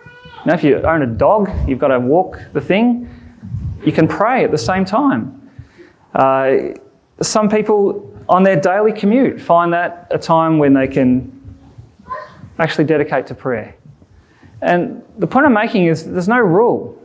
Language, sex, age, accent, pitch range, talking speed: English, male, 20-39, Australian, 145-190 Hz, 160 wpm